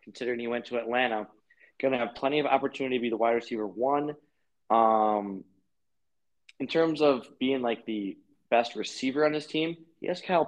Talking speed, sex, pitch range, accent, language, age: 185 wpm, male, 110-140 Hz, American, English, 20-39